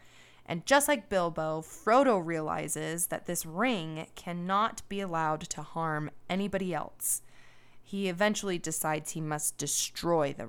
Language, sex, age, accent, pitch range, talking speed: English, female, 20-39, American, 155-195 Hz, 130 wpm